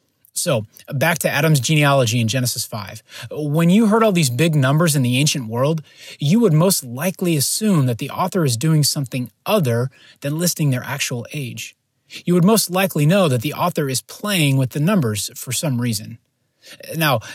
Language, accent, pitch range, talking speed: English, American, 120-155 Hz, 185 wpm